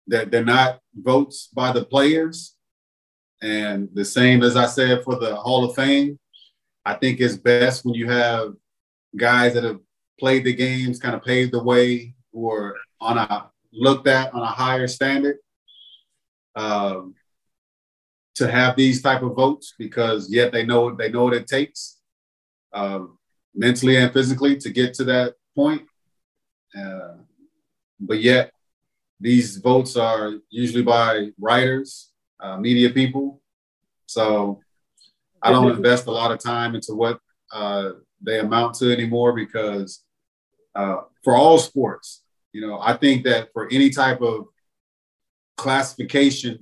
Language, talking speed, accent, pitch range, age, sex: English, 140 wpm, American, 110-130 Hz, 30-49, male